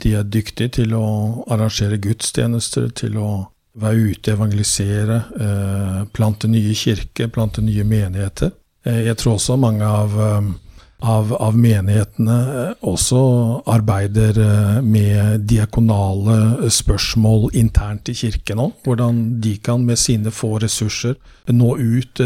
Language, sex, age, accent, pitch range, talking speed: Danish, male, 50-69, Norwegian, 105-120 Hz, 115 wpm